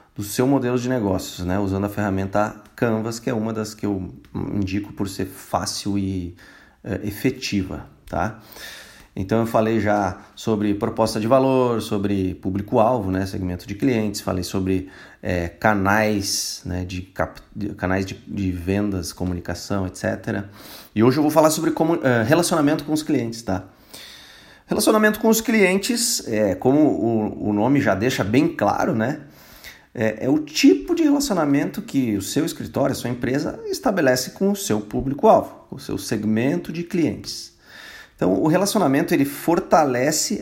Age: 30-49